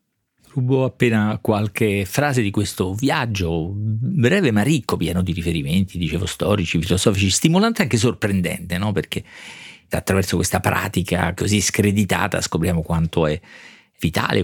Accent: native